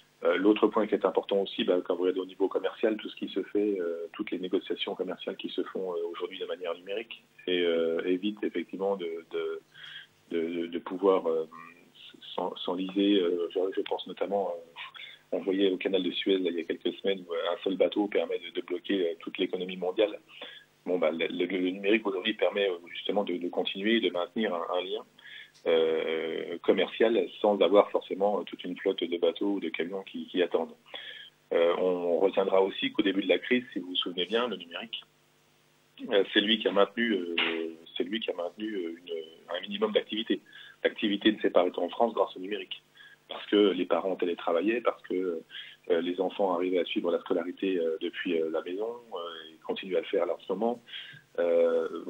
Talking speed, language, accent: 205 wpm, French, French